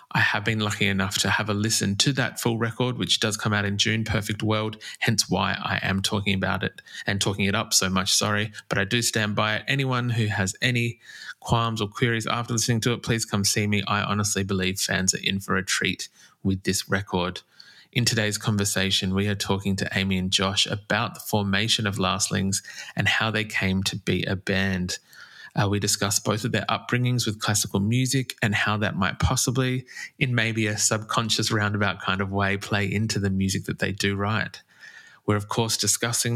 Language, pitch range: English, 95-115 Hz